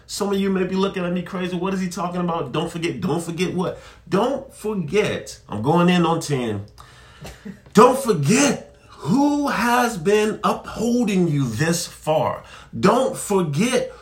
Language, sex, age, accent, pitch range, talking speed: English, male, 40-59, American, 155-225 Hz, 160 wpm